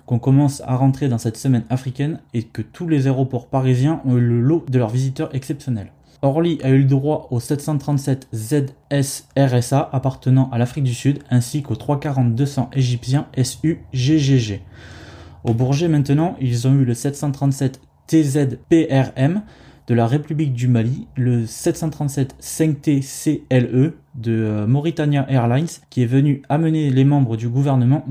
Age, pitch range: 20-39, 125-150 Hz